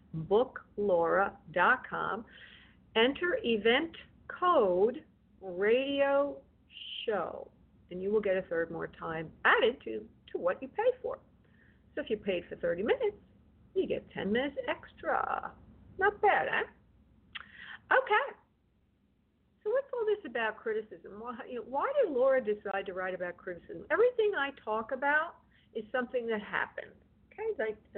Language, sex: English, female